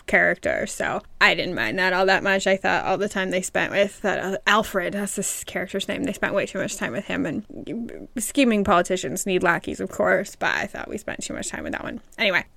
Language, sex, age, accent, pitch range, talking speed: English, female, 20-39, American, 185-210 Hz, 245 wpm